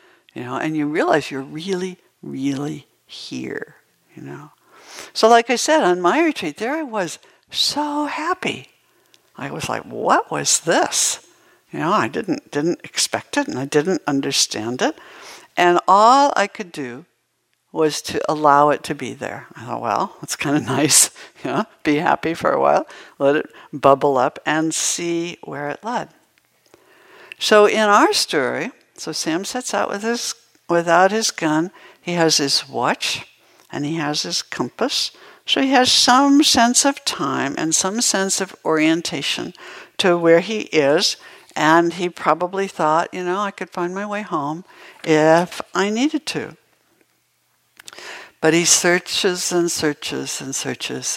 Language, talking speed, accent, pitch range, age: English, 160 wpm, American, 150-215 Hz, 60-79